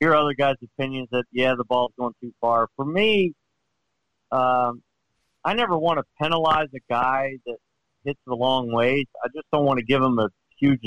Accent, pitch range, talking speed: American, 120-145 Hz, 195 wpm